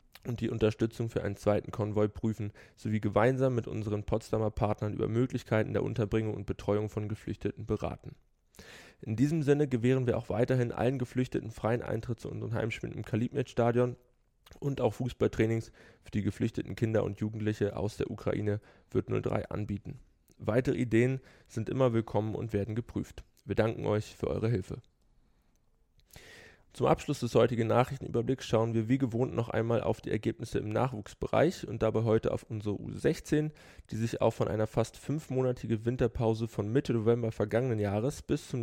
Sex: male